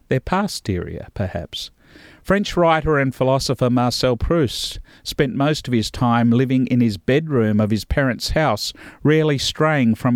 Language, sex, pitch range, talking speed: English, male, 120-160 Hz, 150 wpm